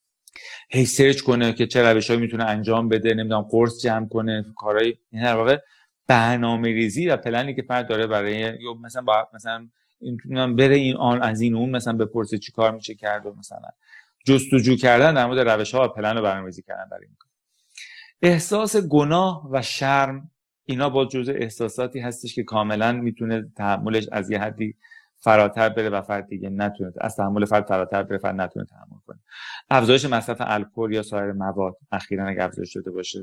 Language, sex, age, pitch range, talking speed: Persian, male, 30-49, 100-125 Hz, 170 wpm